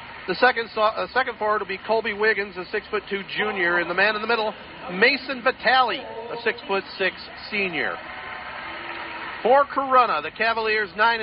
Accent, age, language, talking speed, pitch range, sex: American, 40-59, English, 175 wpm, 180-220 Hz, male